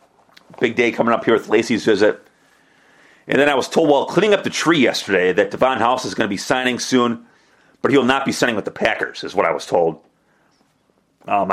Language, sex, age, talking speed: English, male, 30-49, 220 wpm